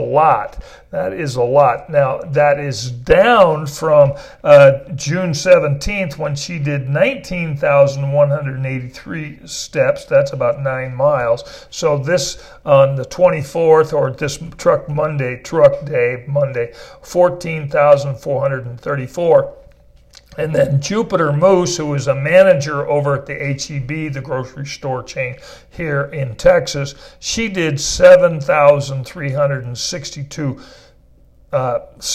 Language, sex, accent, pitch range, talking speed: English, male, American, 135-175 Hz, 110 wpm